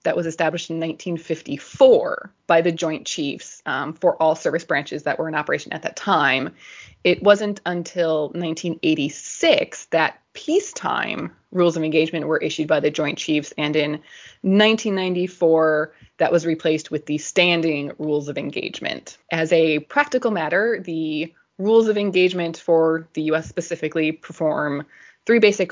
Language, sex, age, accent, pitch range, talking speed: English, female, 20-39, American, 160-190 Hz, 145 wpm